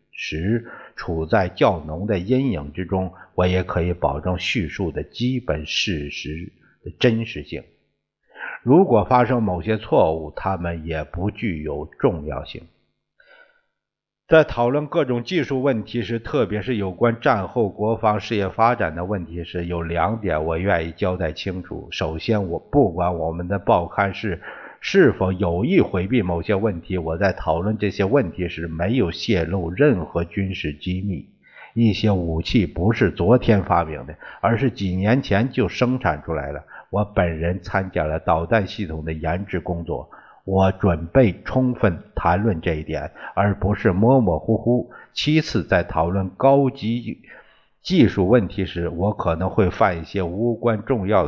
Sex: male